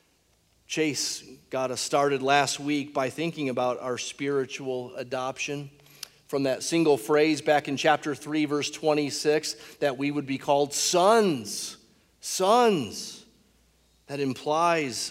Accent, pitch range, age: American, 135-200 Hz, 40-59